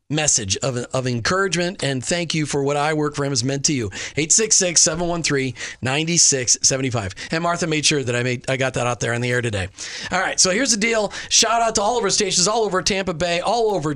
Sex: male